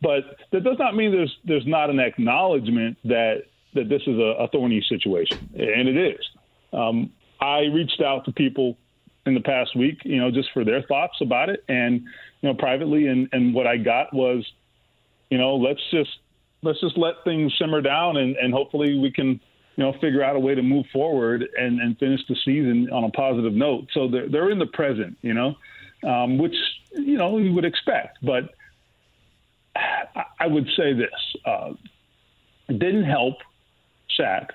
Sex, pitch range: male, 120-160 Hz